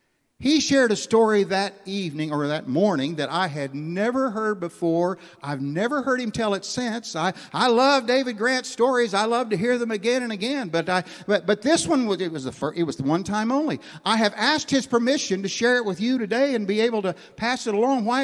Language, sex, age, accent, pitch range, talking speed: English, male, 60-79, American, 165-220 Hz, 235 wpm